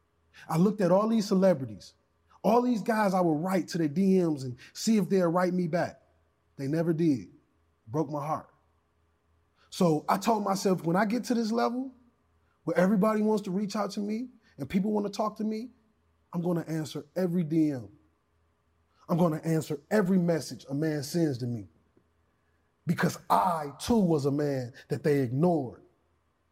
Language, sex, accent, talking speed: English, male, American, 180 wpm